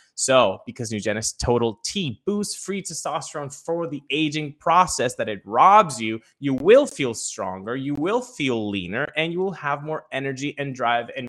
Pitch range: 130-170 Hz